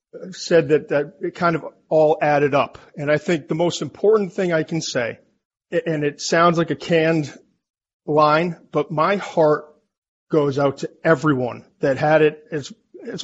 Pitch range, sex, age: 145-170 Hz, male, 40-59